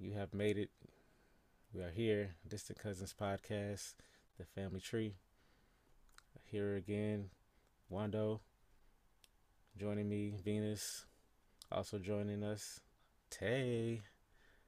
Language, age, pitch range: English, 20-39, 95-115 Hz